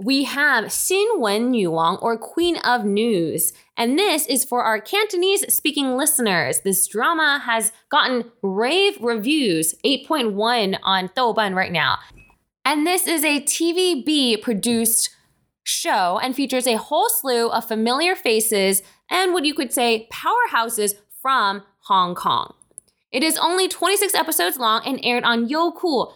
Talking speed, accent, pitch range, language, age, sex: 145 wpm, American, 215-300 Hz, English, 20-39, female